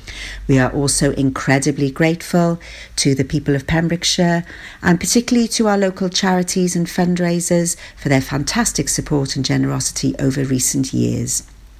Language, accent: English, British